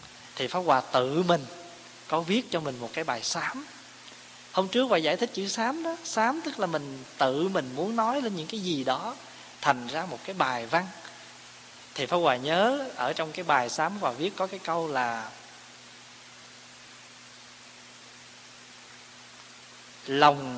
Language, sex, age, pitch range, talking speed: Vietnamese, male, 20-39, 140-195 Hz, 165 wpm